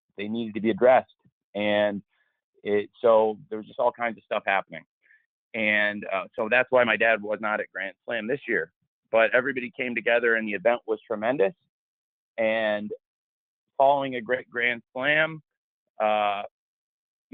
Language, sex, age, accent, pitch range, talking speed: English, male, 30-49, American, 105-125 Hz, 160 wpm